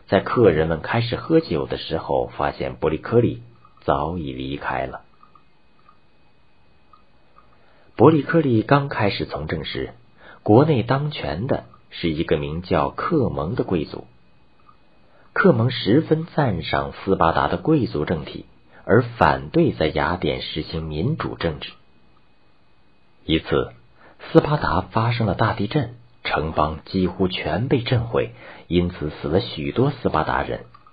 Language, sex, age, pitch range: Chinese, male, 50-69, 75-125 Hz